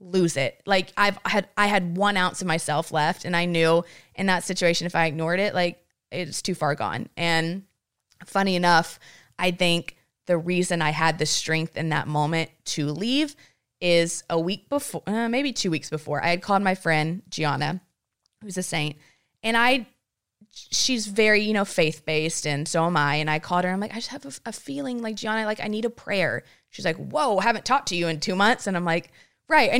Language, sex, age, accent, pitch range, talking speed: English, female, 20-39, American, 165-215 Hz, 220 wpm